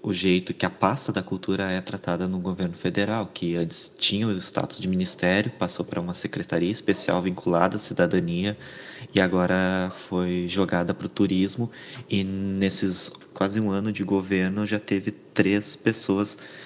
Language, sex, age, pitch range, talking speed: Portuguese, male, 20-39, 90-105 Hz, 160 wpm